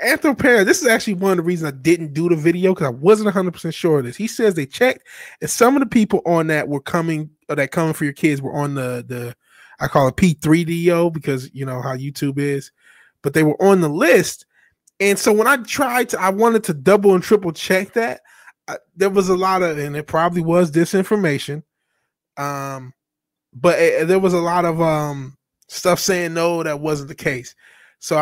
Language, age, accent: English, 20-39, American